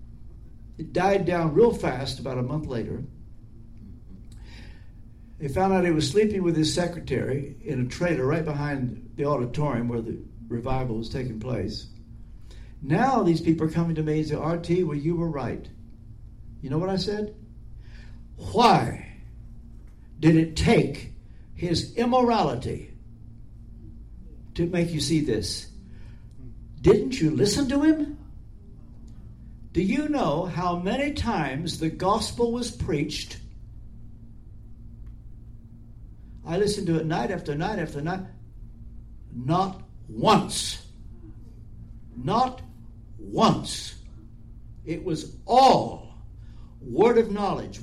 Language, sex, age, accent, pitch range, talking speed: English, male, 60-79, American, 115-175 Hz, 120 wpm